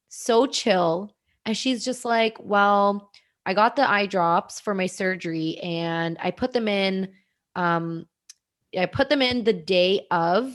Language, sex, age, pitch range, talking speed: English, female, 20-39, 170-220 Hz, 160 wpm